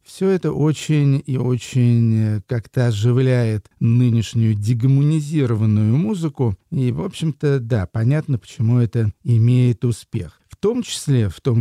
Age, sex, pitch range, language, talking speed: 50-69, male, 115-140 Hz, Russian, 125 wpm